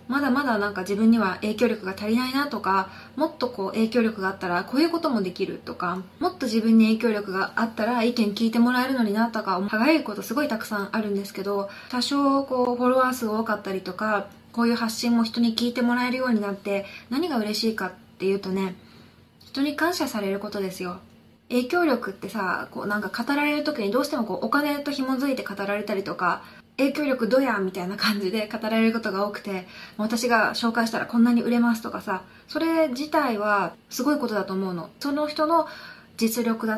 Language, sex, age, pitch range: Japanese, female, 20-39, 200-250 Hz